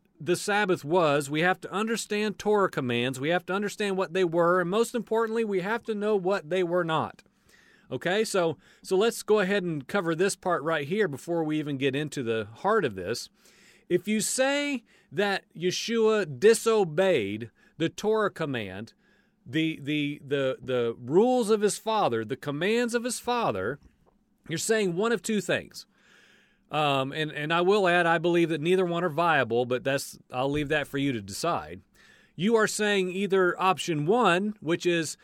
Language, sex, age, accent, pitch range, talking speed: English, male, 40-59, American, 160-210 Hz, 180 wpm